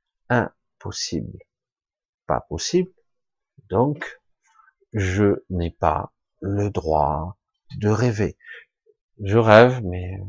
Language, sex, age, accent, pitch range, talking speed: French, male, 50-69, French, 85-135 Hz, 80 wpm